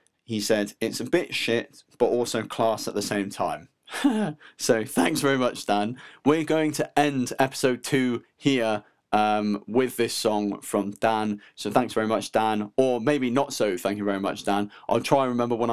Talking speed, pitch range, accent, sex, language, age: 190 wpm, 110-130 Hz, British, male, English, 20-39